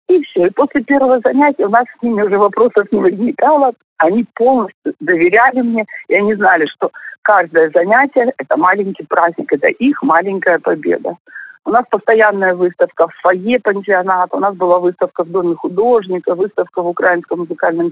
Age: 50-69